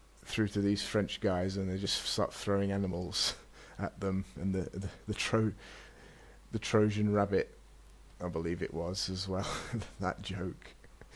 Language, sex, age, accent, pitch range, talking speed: English, male, 30-49, British, 95-100 Hz, 155 wpm